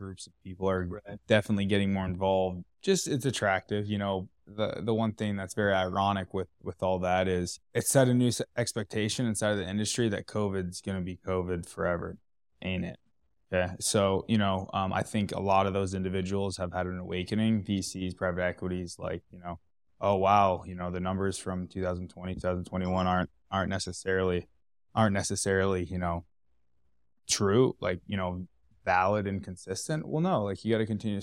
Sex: male